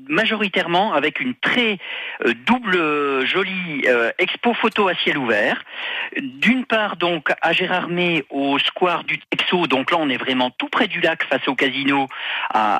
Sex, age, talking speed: male, 50-69, 160 wpm